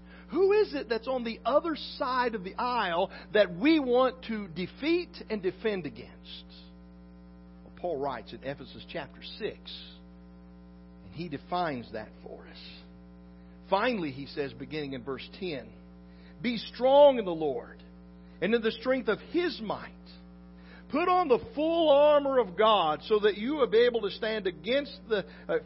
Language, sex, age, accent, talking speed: English, male, 50-69, American, 160 wpm